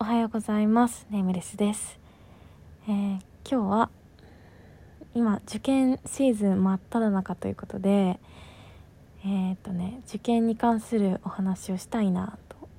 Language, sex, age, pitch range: Japanese, female, 20-39, 185-225 Hz